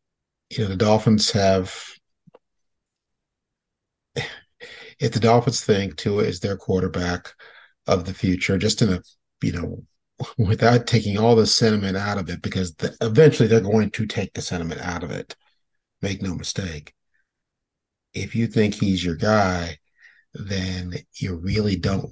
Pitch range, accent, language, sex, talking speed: 90-110 Hz, American, English, male, 145 wpm